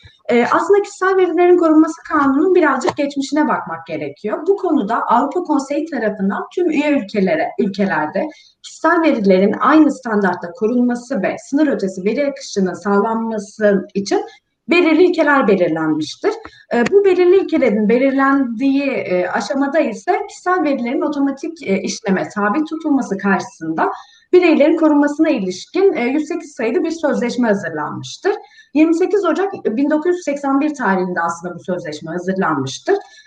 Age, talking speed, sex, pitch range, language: 30-49, 110 wpm, female, 205-325 Hz, Turkish